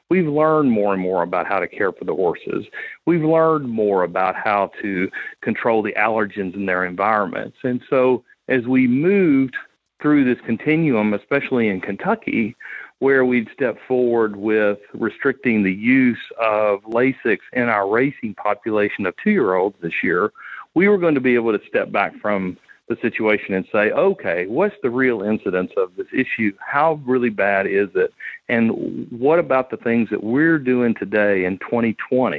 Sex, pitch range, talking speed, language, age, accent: male, 110-150 Hz, 170 wpm, English, 40-59, American